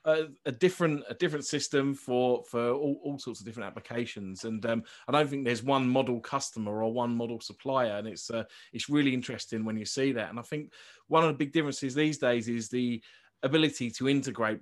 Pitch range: 110-135 Hz